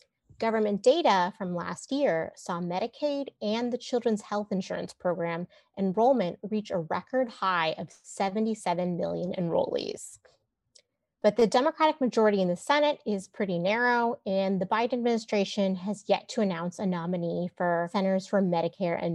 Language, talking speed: English, 145 wpm